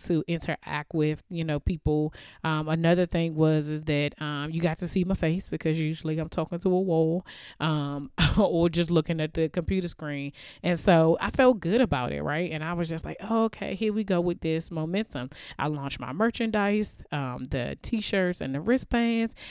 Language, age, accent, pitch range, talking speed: English, 20-39, American, 145-175 Hz, 195 wpm